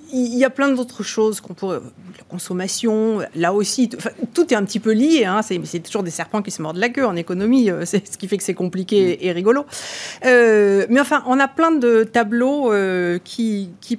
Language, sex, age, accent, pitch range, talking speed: French, female, 40-59, French, 185-245 Hz, 215 wpm